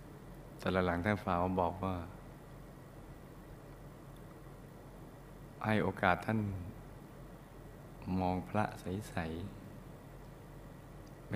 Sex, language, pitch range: male, Thai, 95-135 Hz